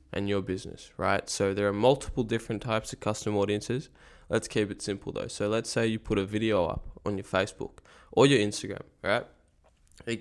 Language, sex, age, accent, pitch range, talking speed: English, male, 10-29, Australian, 100-115 Hz, 200 wpm